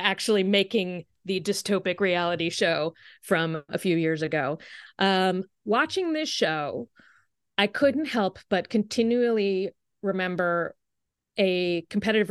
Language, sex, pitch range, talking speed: English, female, 185-230 Hz, 110 wpm